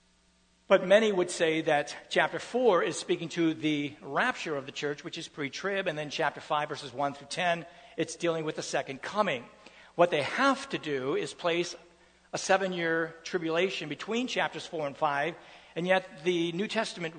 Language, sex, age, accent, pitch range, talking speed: English, male, 60-79, American, 160-190 Hz, 180 wpm